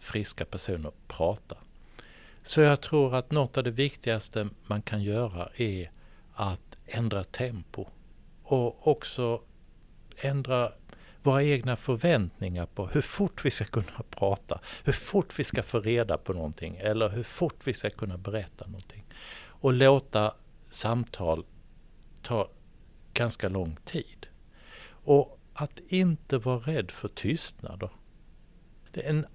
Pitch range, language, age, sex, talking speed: 100-135 Hz, Swedish, 60-79, male, 125 wpm